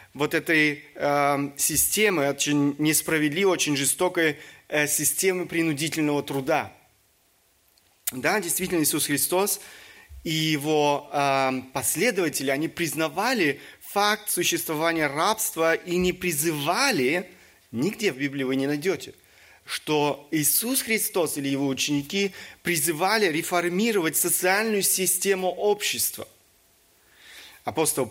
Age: 30-49